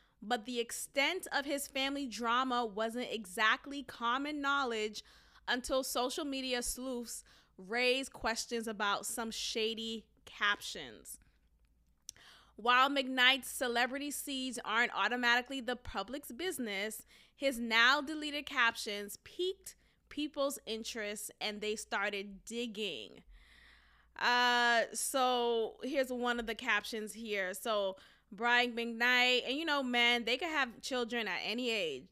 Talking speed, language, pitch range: 115 wpm, English, 220-270 Hz